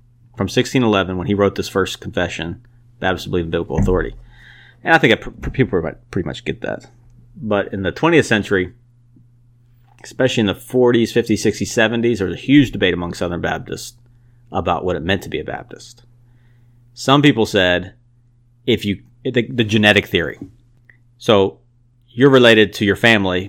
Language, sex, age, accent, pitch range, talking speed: English, male, 30-49, American, 100-120 Hz, 170 wpm